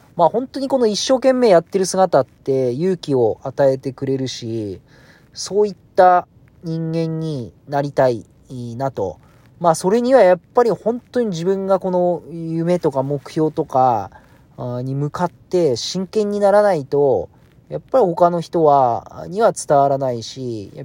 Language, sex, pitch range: Japanese, male, 135-175 Hz